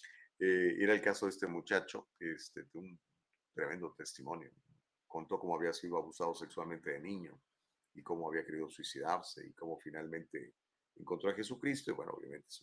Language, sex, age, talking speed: Spanish, male, 40-59, 155 wpm